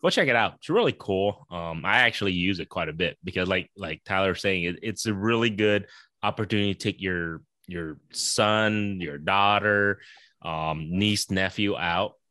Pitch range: 95-125 Hz